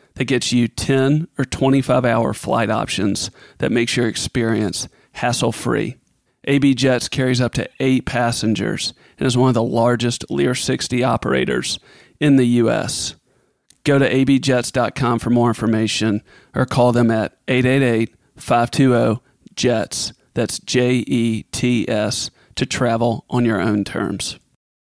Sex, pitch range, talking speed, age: male, 115-140 Hz, 125 wpm, 40-59